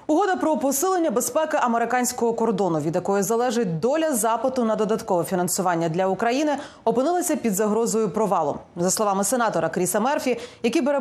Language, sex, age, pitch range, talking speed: Ukrainian, female, 30-49, 195-265 Hz, 145 wpm